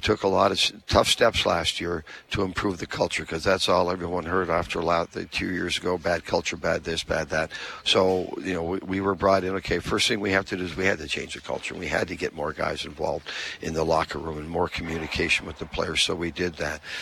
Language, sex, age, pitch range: English, male, 60-79, 85-95 Hz